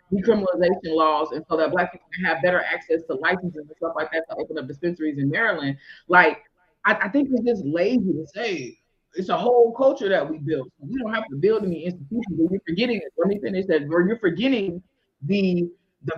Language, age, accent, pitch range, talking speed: English, 20-39, American, 165-225 Hz, 220 wpm